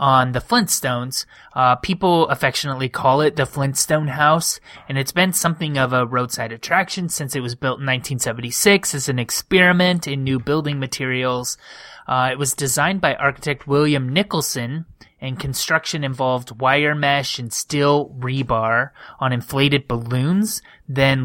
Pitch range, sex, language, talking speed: 130-160 Hz, male, English, 145 wpm